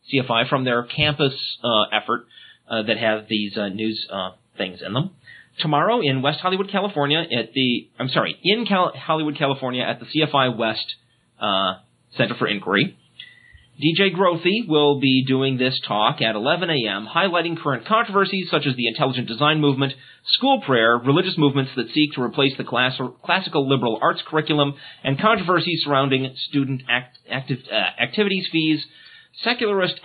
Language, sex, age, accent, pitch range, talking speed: English, male, 30-49, American, 120-160 Hz, 160 wpm